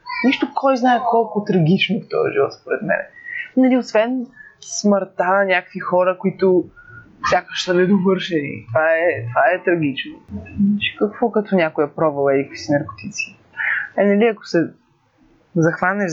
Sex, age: female, 20-39